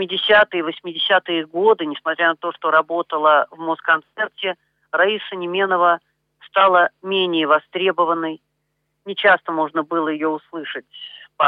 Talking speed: 120 wpm